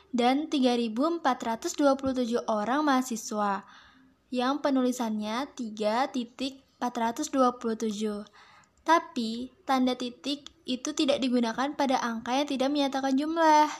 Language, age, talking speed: Indonesian, 10-29, 85 wpm